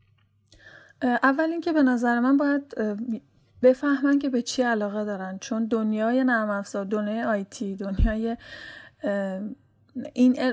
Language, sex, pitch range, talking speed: Persian, female, 200-250 Hz, 110 wpm